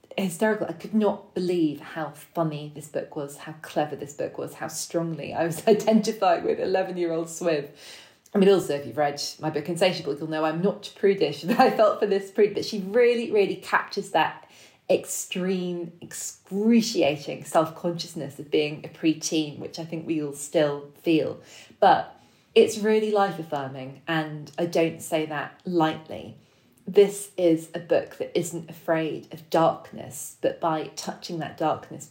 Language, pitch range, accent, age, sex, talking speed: English, 155-205 Hz, British, 20-39, female, 170 wpm